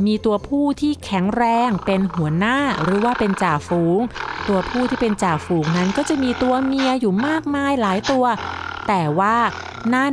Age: 30-49